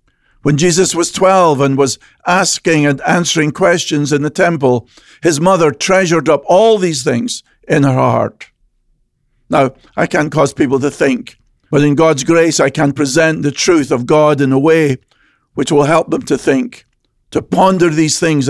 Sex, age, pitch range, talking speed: male, 50-69, 140-175 Hz, 175 wpm